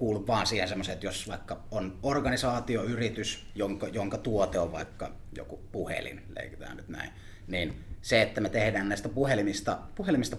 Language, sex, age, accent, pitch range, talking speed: Finnish, male, 30-49, native, 95-110 Hz, 150 wpm